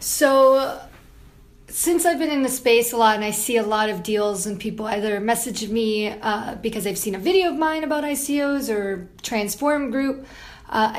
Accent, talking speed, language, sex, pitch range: American, 190 wpm, English, female, 215-245 Hz